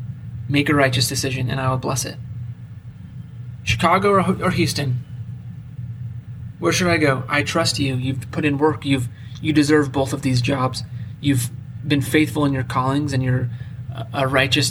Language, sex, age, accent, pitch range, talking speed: English, male, 20-39, American, 120-150 Hz, 165 wpm